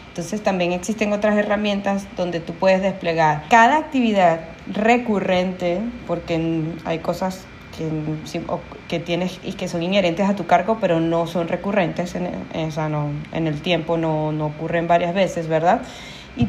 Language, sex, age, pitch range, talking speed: Spanish, female, 20-39, 175-225 Hz, 150 wpm